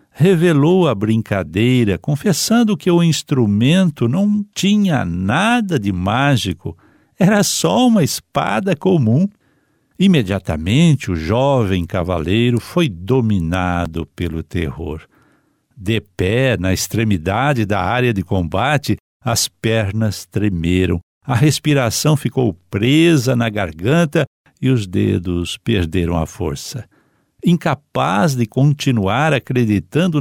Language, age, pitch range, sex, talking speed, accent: Portuguese, 60-79, 95-150 Hz, male, 105 wpm, Brazilian